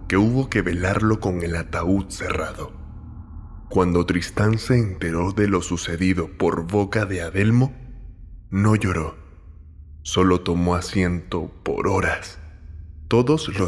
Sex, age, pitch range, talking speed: male, 20-39, 85-105 Hz, 125 wpm